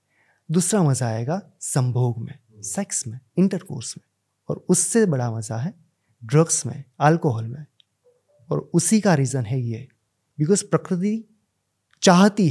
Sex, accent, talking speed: male, native, 130 wpm